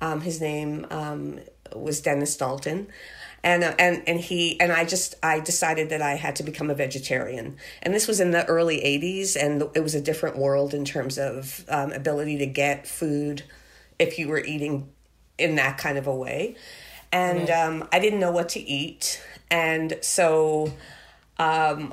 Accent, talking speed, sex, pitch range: American, 180 wpm, female, 145-175 Hz